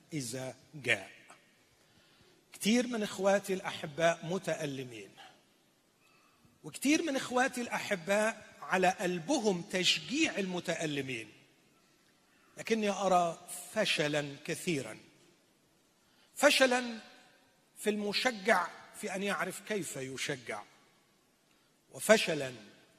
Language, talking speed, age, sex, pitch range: Arabic, 75 wpm, 40-59, male, 150-215 Hz